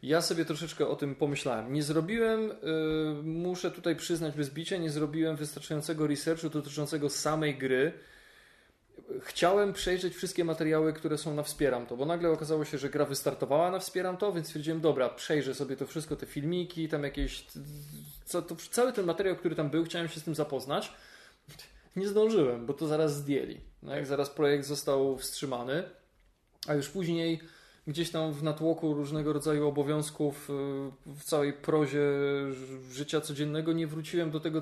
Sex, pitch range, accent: male, 140-160 Hz, native